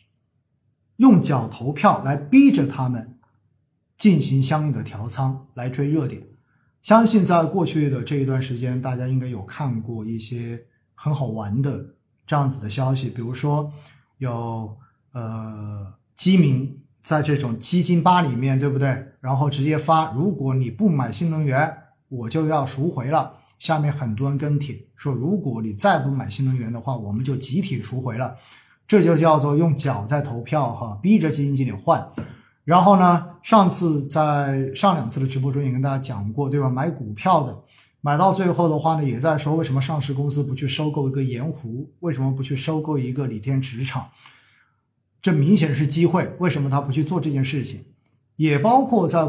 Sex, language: male, Chinese